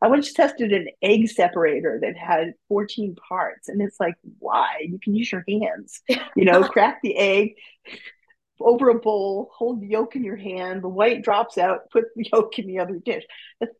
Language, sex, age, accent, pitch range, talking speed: English, female, 50-69, American, 180-225 Hz, 190 wpm